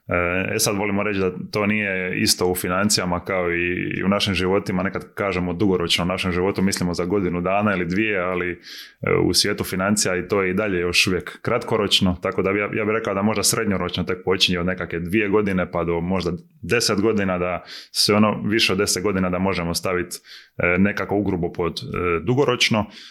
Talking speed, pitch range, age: 185 wpm, 90-105 Hz, 20-39